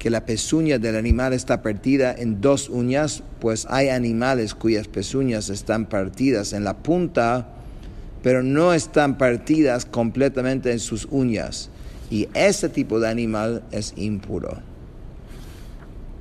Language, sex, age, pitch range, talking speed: English, male, 50-69, 105-130 Hz, 130 wpm